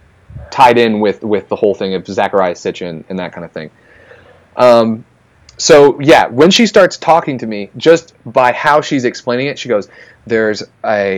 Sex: male